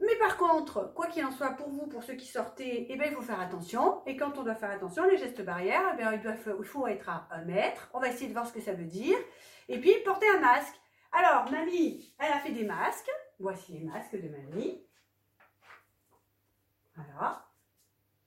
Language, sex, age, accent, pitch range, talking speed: French, female, 40-59, French, 210-350 Hz, 215 wpm